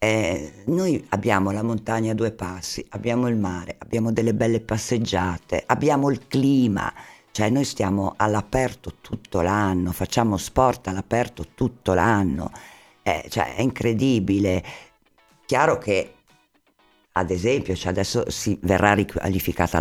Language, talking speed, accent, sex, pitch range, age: Italian, 120 wpm, native, female, 90-115 Hz, 50-69